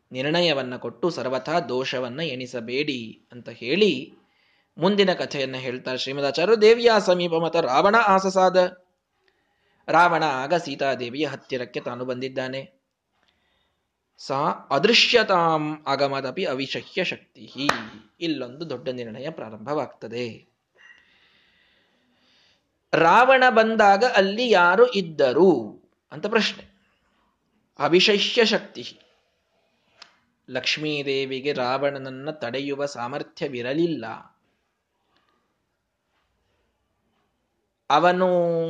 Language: Kannada